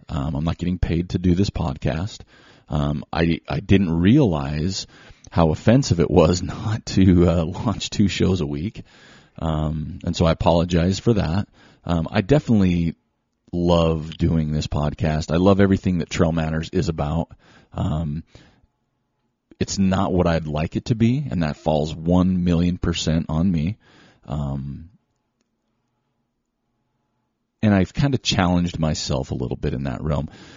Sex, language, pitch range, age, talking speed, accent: male, English, 80-95 Hz, 30-49, 155 wpm, American